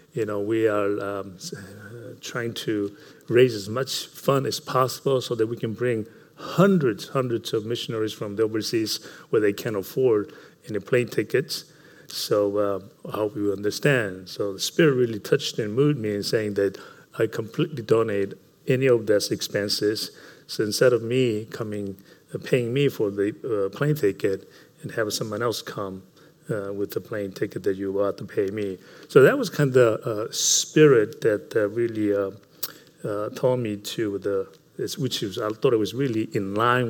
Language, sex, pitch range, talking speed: English, male, 100-130 Hz, 180 wpm